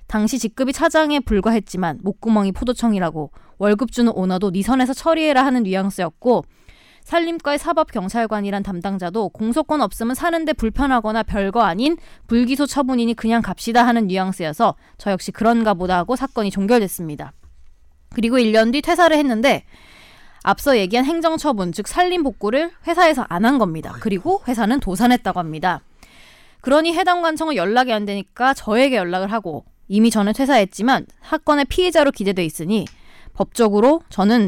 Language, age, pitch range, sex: Korean, 20-39, 195-275 Hz, female